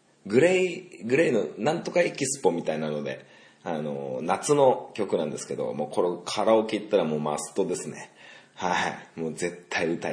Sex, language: male, Japanese